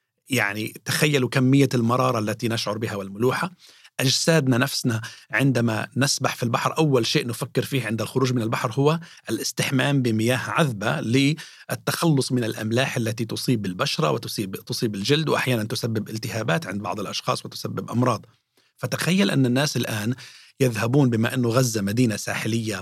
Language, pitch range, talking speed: Arabic, 110-140 Hz, 140 wpm